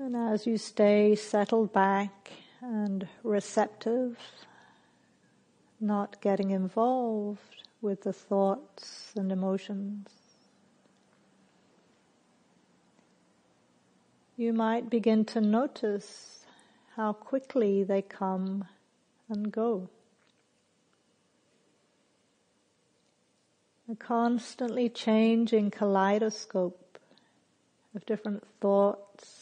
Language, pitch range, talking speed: English, 195-225 Hz, 70 wpm